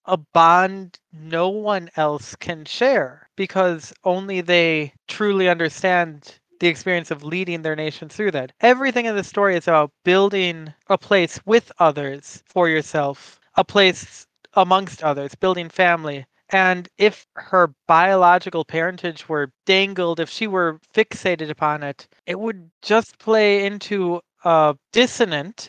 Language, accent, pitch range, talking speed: English, American, 160-190 Hz, 140 wpm